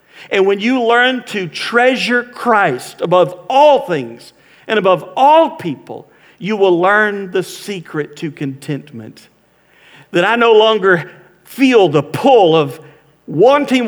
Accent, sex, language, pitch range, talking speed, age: American, male, English, 155-205 Hz, 130 wpm, 50-69